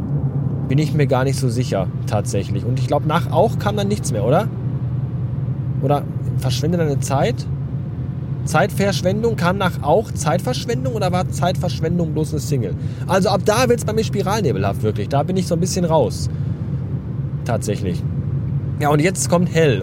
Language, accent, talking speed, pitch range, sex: German, German, 165 wpm, 130-150 Hz, male